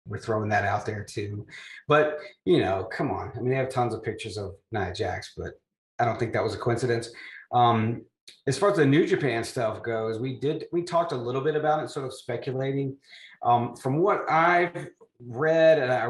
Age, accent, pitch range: 30-49, American, 110-130 Hz